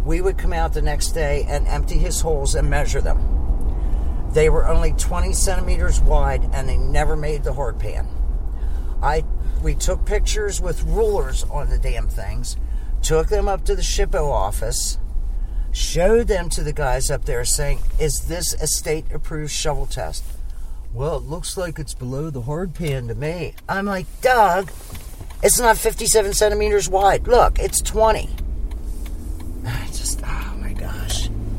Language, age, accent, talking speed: English, 50-69, American, 160 wpm